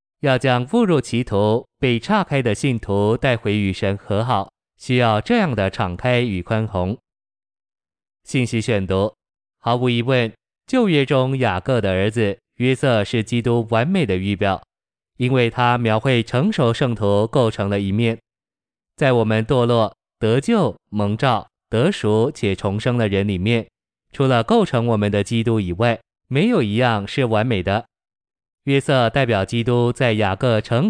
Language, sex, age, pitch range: Chinese, male, 20-39, 105-130 Hz